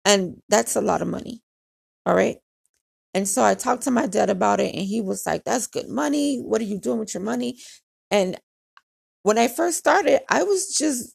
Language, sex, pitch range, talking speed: English, female, 210-265 Hz, 210 wpm